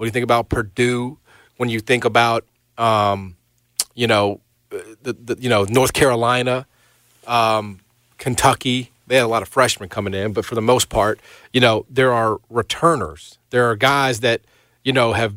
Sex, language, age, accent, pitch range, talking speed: male, English, 40-59, American, 110-130 Hz, 175 wpm